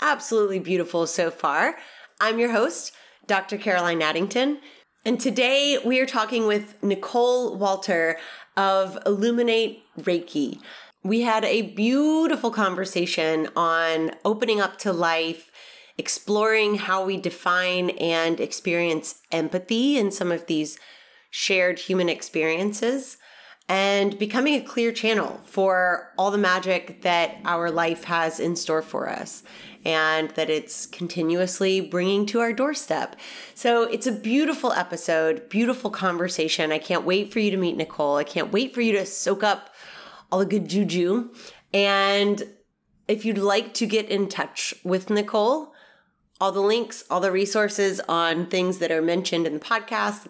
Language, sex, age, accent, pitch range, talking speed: English, female, 30-49, American, 175-225 Hz, 145 wpm